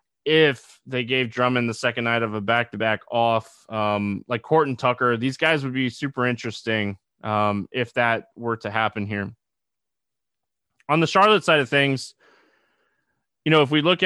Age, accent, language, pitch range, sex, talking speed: 20-39, American, English, 110-135 Hz, male, 170 wpm